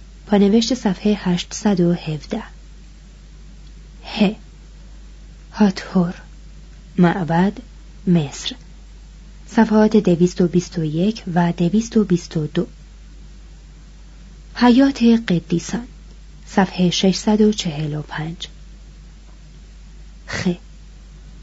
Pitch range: 170-210 Hz